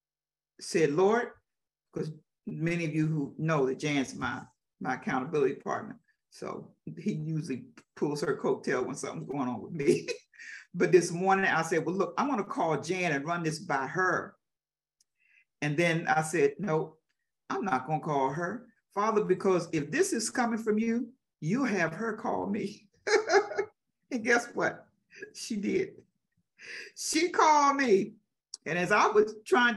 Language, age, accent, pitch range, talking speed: English, 50-69, American, 170-245 Hz, 160 wpm